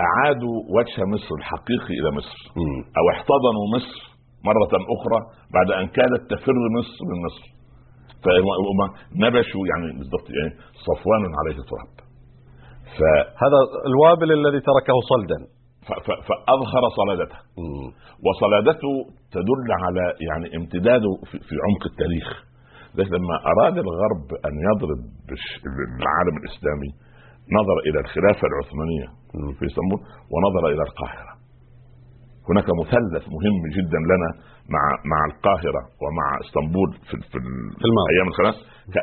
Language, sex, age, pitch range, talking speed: Arabic, male, 60-79, 85-125 Hz, 110 wpm